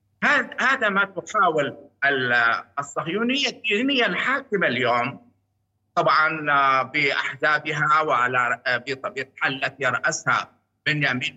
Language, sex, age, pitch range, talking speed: Arabic, male, 50-69, 135-180 Hz, 80 wpm